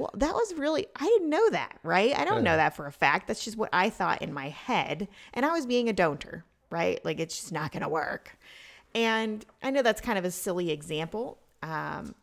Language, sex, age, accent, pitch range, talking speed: English, female, 30-49, American, 150-225 Hz, 235 wpm